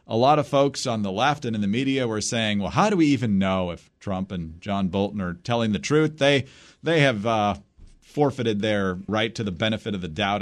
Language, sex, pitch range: English, male, 100-145 Hz